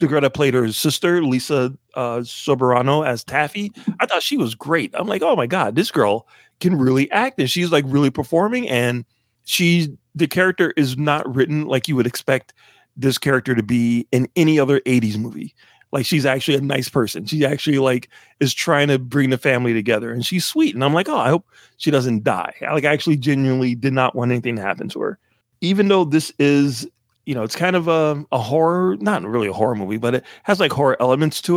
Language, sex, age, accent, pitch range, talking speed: English, male, 30-49, American, 125-165 Hz, 220 wpm